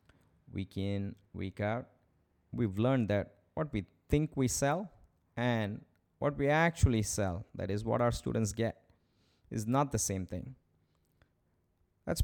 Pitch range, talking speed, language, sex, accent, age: 90-110 Hz, 140 wpm, English, male, Indian, 20-39